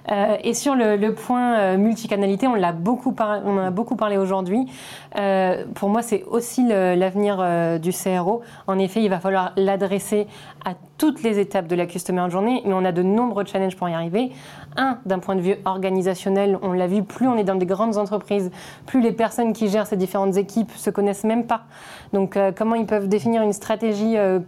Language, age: French, 20-39